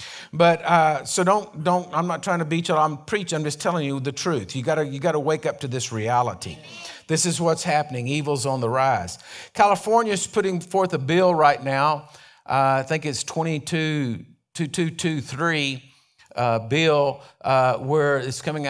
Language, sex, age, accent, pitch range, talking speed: English, male, 50-69, American, 135-170 Hz, 180 wpm